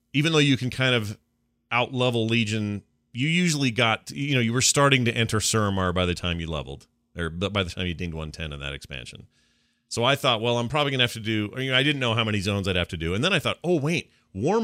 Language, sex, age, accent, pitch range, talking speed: English, male, 40-59, American, 90-125 Hz, 260 wpm